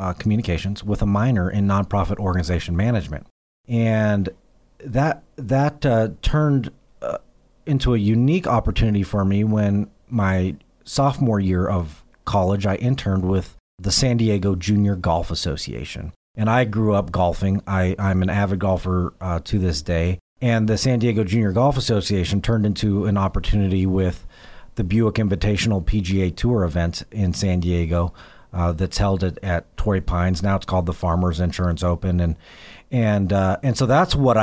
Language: English